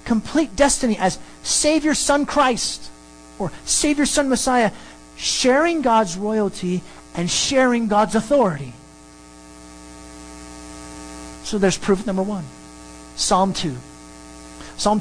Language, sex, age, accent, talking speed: English, male, 40-59, American, 100 wpm